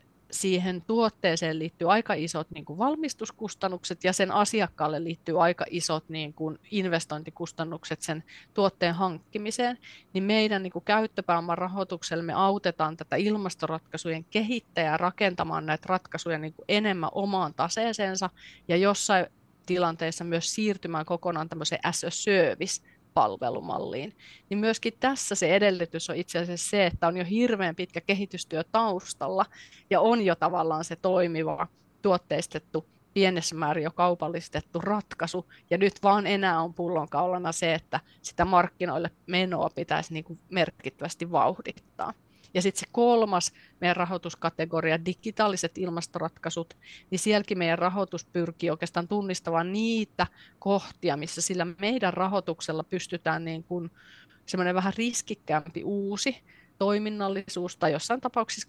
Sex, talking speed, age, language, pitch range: female, 120 wpm, 30-49, Finnish, 165-200 Hz